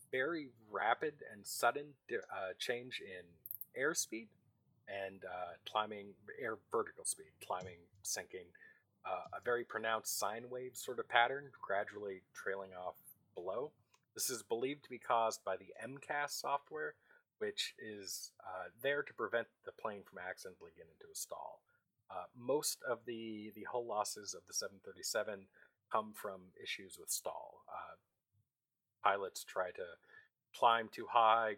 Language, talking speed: English, 145 wpm